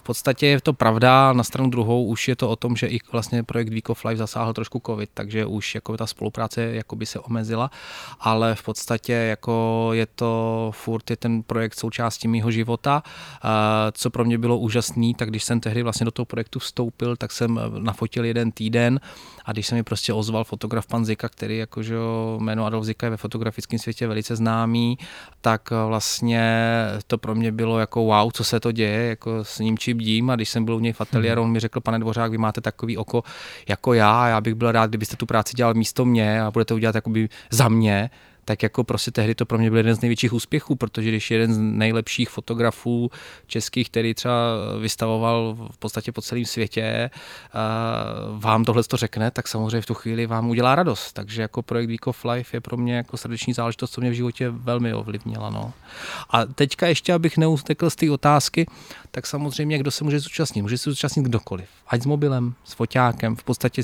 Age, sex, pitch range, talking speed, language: 20-39, male, 110-120 Hz, 200 wpm, Czech